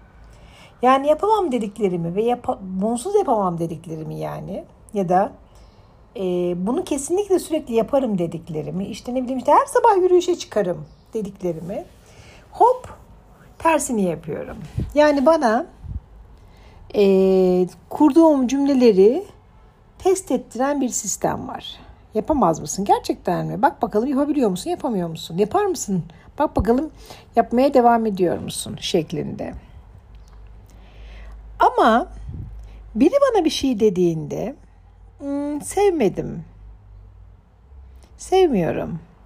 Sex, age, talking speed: female, 60-79, 100 wpm